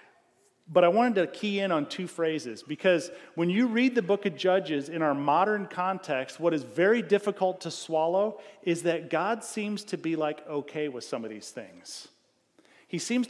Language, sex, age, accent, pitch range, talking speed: English, male, 40-59, American, 150-195 Hz, 190 wpm